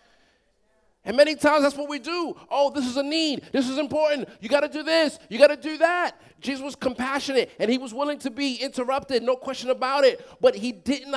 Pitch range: 195-275 Hz